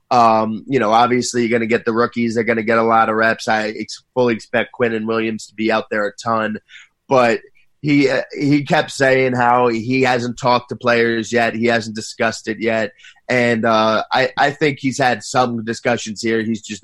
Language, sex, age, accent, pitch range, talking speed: English, male, 30-49, American, 110-125 Hz, 215 wpm